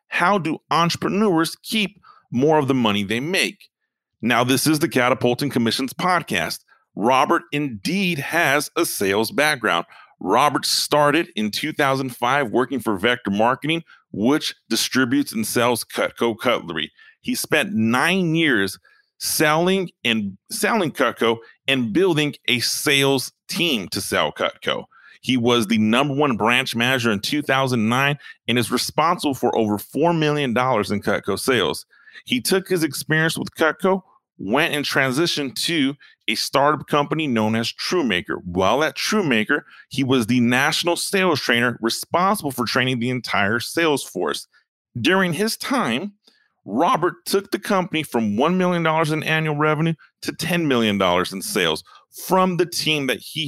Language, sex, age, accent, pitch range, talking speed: English, male, 30-49, American, 120-170 Hz, 140 wpm